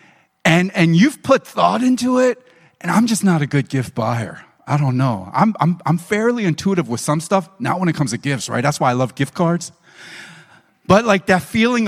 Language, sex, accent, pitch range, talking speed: English, male, American, 145-200 Hz, 215 wpm